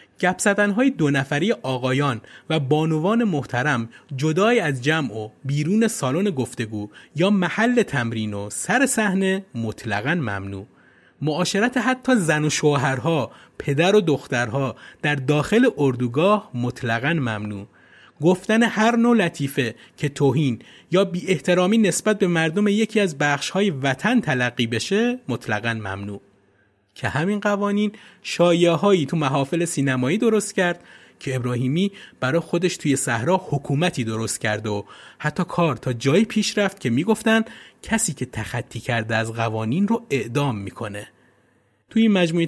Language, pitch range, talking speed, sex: Persian, 125-190 Hz, 130 wpm, male